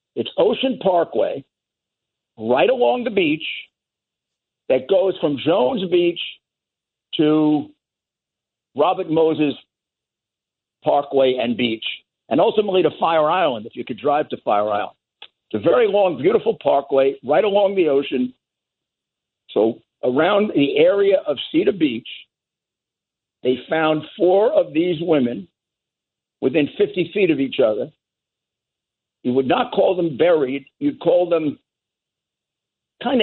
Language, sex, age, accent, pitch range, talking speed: English, male, 60-79, American, 150-245 Hz, 125 wpm